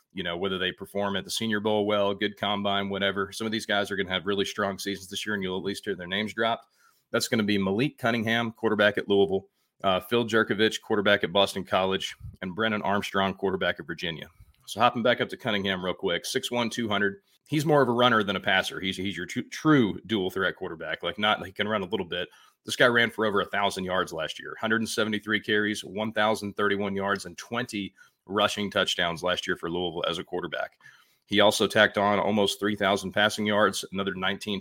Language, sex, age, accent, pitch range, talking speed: English, male, 30-49, American, 100-110 Hz, 230 wpm